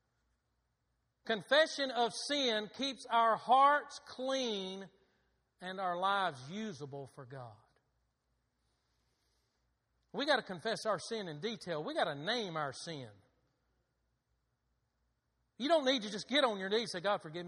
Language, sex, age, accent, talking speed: English, male, 40-59, American, 135 wpm